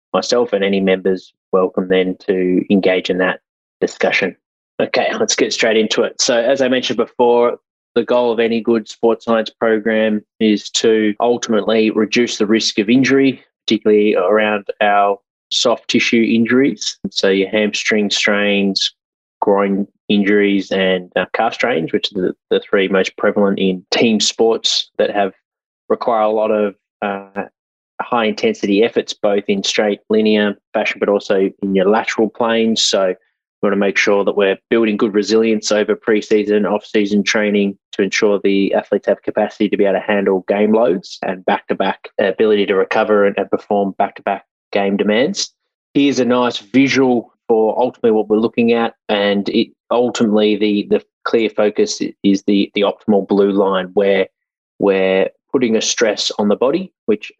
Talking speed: 160 wpm